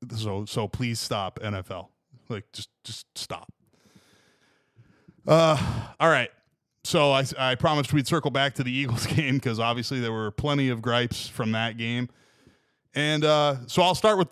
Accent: American